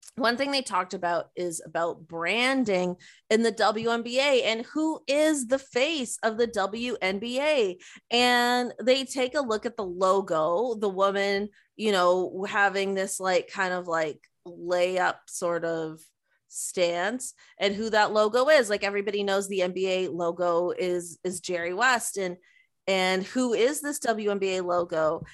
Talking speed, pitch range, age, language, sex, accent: 150 wpm, 180-245 Hz, 30-49, English, female, American